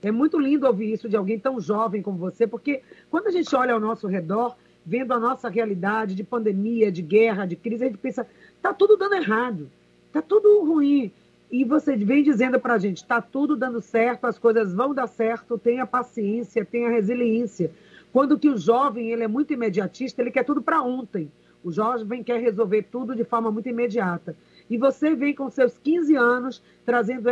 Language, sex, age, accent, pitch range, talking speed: Portuguese, female, 40-59, Brazilian, 220-255 Hz, 190 wpm